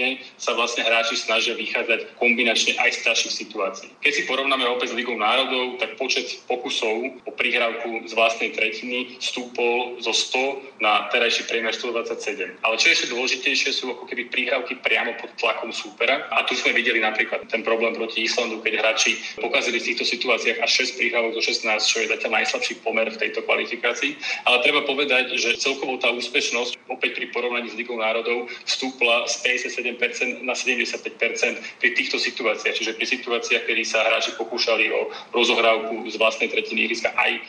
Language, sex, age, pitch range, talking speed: Slovak, male, 30-49, 115-130 Hz, 170 wpm